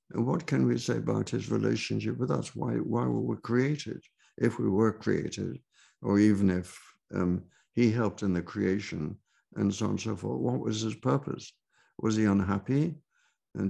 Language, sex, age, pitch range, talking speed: English, male, 60-79, 95-115 Hz, 185 wpm